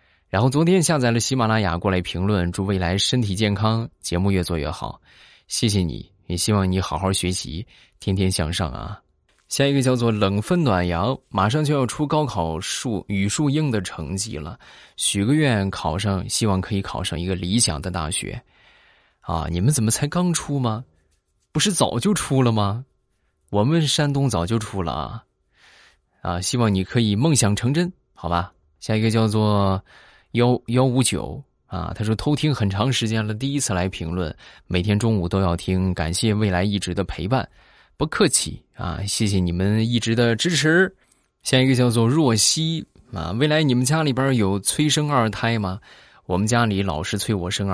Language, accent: Chinese, native